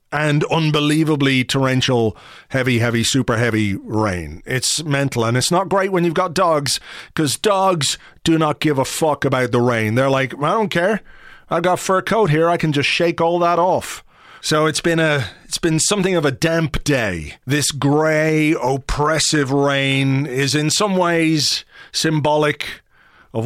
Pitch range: 135-170 Hz